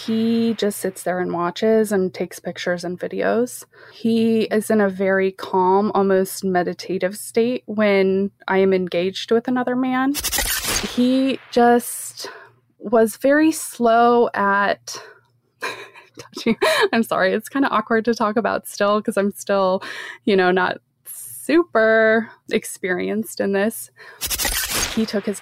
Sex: female